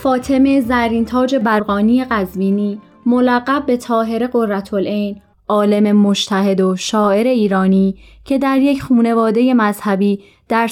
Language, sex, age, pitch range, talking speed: Persian, female, 20-39, 205-255 Hz, 110 wpm